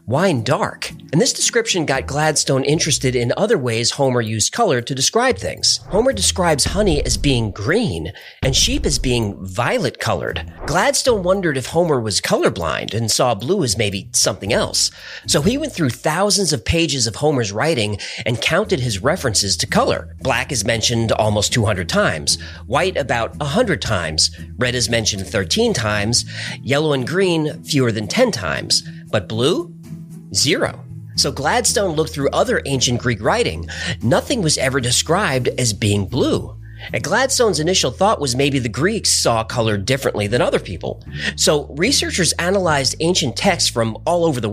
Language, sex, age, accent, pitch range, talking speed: English, male, 40-59, American, 110-155 Hz, 165 wpm